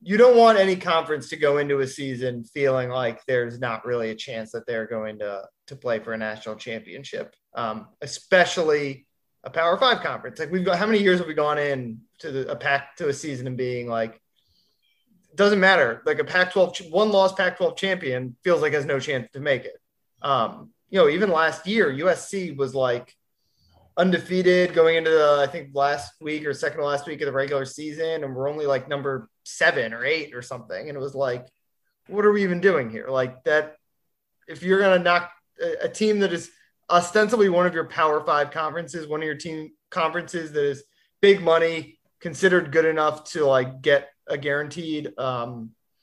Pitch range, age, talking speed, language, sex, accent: 135-175 Hz, 30-49, 200 wpm, English, male, American